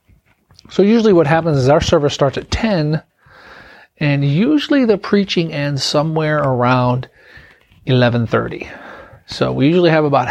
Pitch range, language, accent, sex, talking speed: 125-155 Hz, English, American, male, 135 wpm